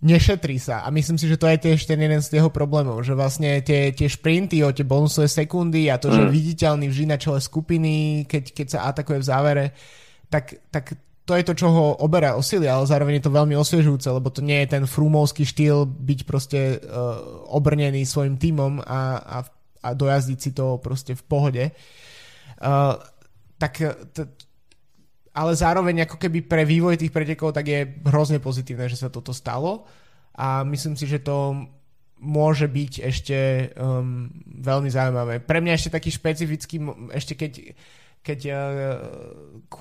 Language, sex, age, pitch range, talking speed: Slovak, male, 20-39, 135-155 Hz, 165 wpm